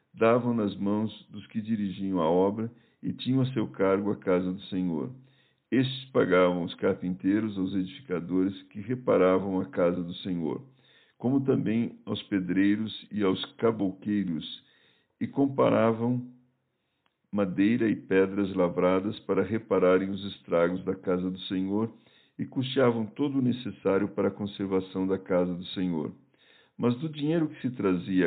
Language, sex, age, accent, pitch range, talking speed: Portuguese, male, 50-69, Brazilian, 95-110 Hz, 145 wpm